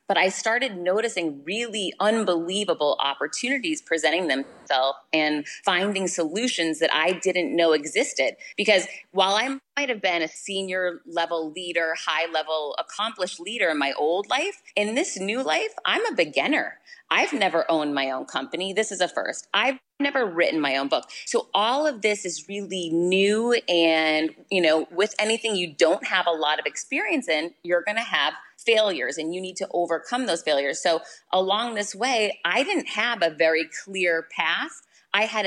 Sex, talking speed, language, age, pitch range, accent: female, 175 wpm, English, 30-49, 160-205 Hz, American